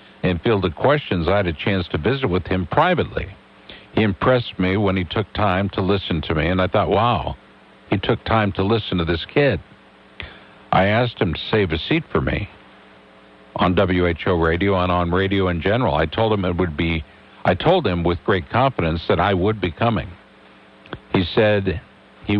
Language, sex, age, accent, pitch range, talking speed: English, male, 60-79, American, 90-110 Hz, 195 wpm